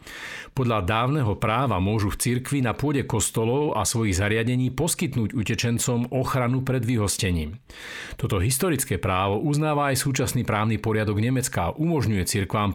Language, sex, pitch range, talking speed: Slovak, male, 105-135 Hz, 135 wpm